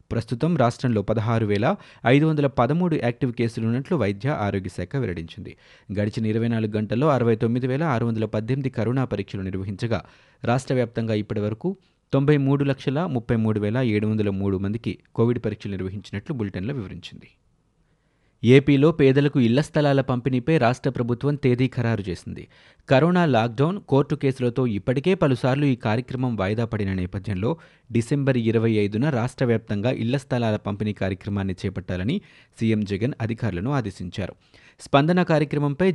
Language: Telugu